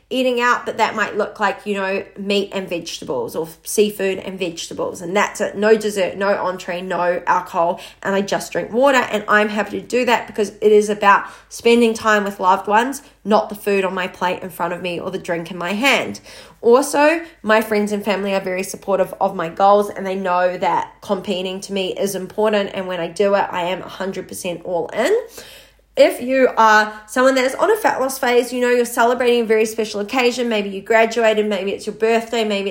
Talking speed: 215 wpm